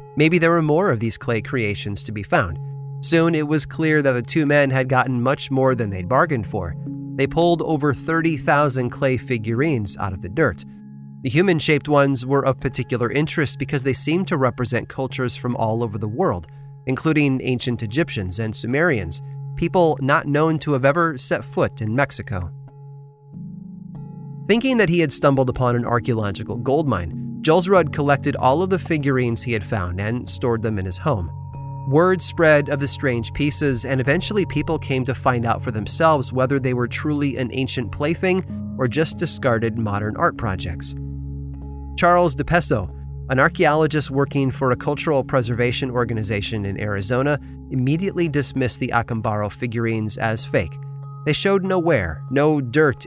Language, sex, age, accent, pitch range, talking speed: English, male, 30-49, American, 120-150 Hz, 170 wpm